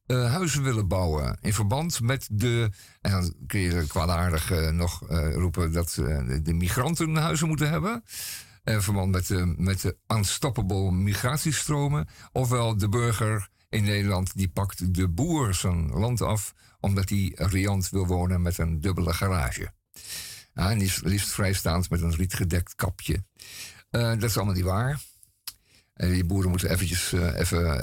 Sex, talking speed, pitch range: male, 150 wpm, 90-120 Hz